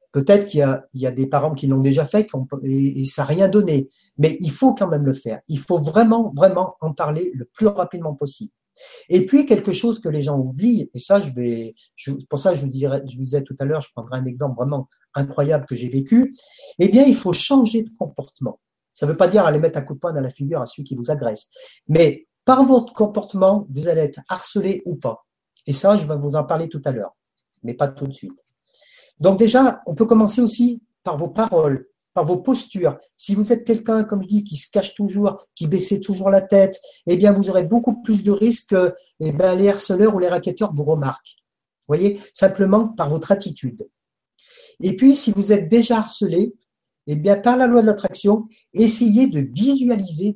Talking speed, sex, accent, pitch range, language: 230 wpm, male, French, 145-215 Hz, French